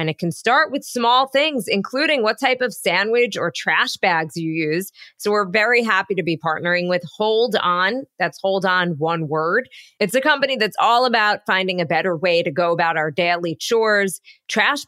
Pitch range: 185-235 Hz